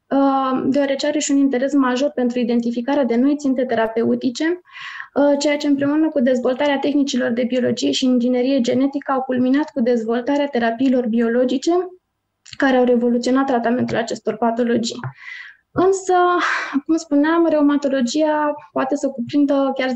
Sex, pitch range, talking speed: female, 245-275 Hz, 130 wpm